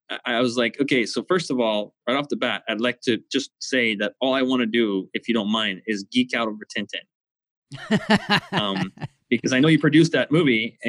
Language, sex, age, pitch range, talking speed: English, male, 20-39, 120-165 Hz, 220 wpm